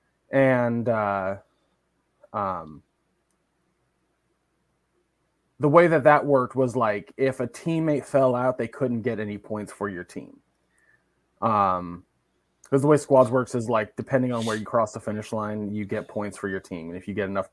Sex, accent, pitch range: male, American, 115-145 Hz